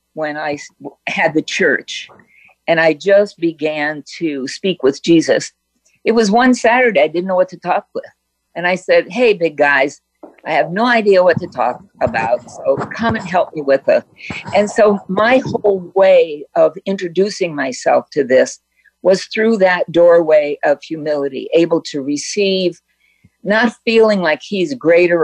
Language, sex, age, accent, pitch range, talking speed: English, female, 50-69, American, 160-215 Hz, 165 wpm